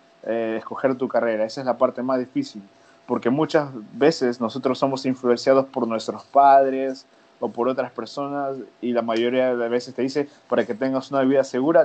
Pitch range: 115-135 Hz